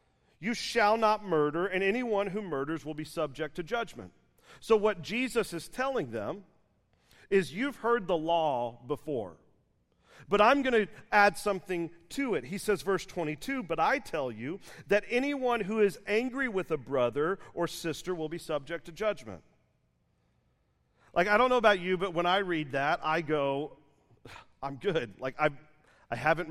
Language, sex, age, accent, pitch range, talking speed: English, male, 40-59, American, 140-195 Hz, 165 wpm